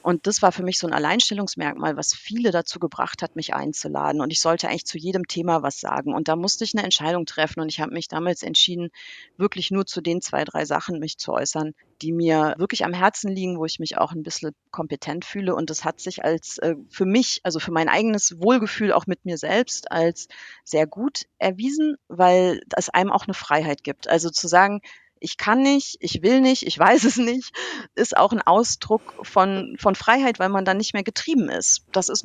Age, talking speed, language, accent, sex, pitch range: 40-59, 220 wpm, German, German, female, 165-210 Hz